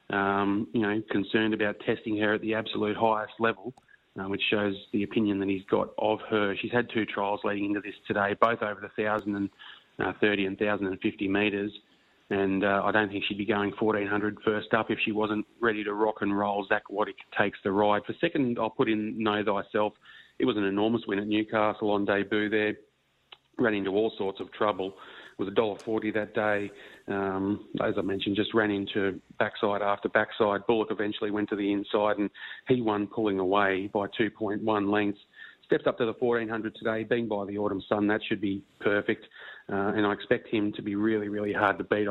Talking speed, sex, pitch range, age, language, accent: 205 wpm, male, 100-110 Hz, 30-49, English, Australian